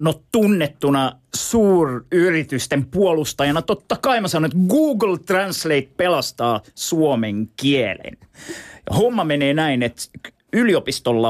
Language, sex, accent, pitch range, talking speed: Finnish, male, native, 125-185 Hz, 100 wpm